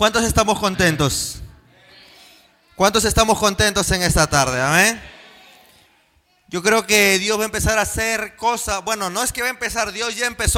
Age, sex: 30-49, male